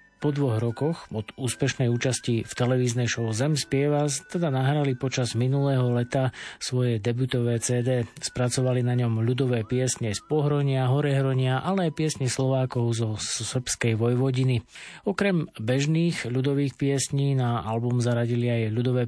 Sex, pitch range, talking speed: male, 120-135 Hz, 135 wpm